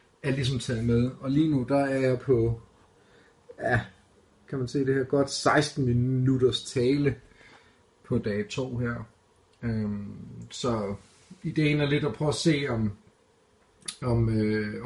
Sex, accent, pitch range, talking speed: male, native, 110-140 Hz, 150 wpm